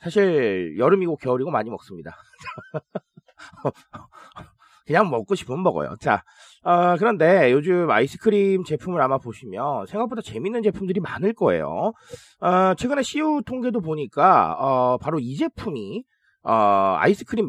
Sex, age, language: male, 30-49, Korean